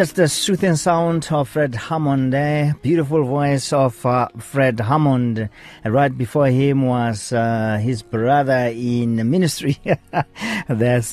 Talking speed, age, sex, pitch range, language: 125 wpm, 40-59, male, 105-140 Hz, English